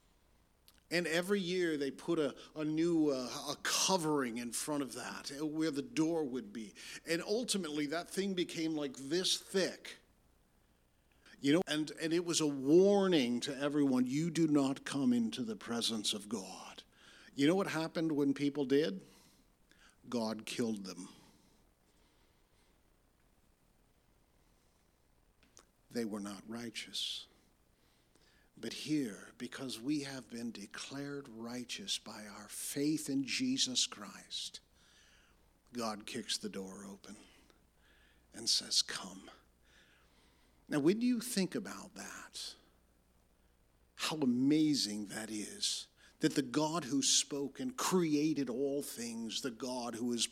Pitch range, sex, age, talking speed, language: 110-165 Hz, male, 50-69, 125 wpm, English